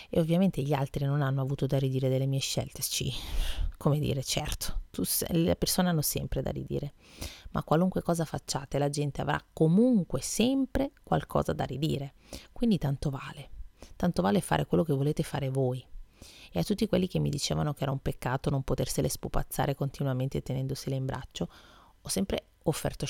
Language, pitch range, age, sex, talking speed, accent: Italian, 130-160 Hz, 30-49, female, 175 wpm, native